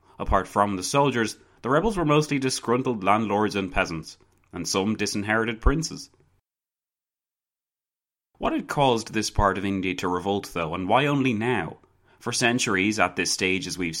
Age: 30-49